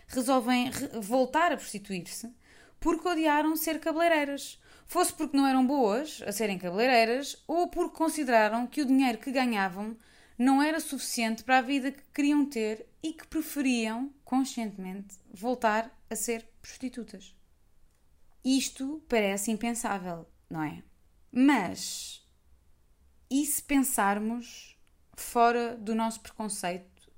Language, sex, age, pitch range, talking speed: Portuguese, female, 20-39, 185-255 Hz, 120 wpm